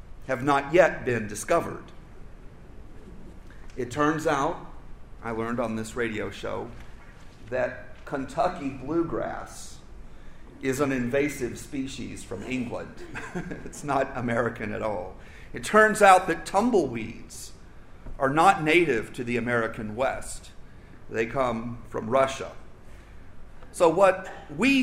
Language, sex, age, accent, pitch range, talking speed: English, male, 50-69, American, 115-180 Hz, 115 wpm